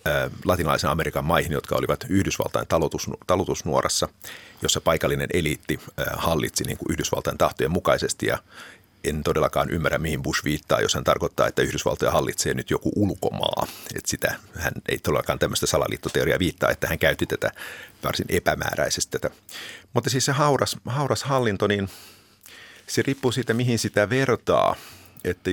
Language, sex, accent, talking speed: Finnish, male, native, 145 wpm